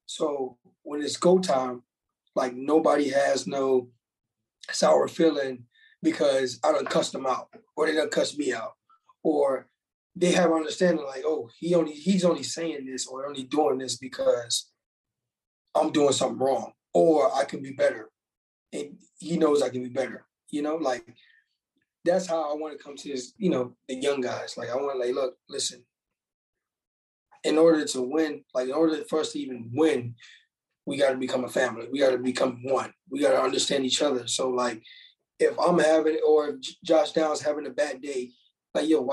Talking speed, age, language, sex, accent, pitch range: 190 wpm, 20-39, English, male, American, 130-165 Hz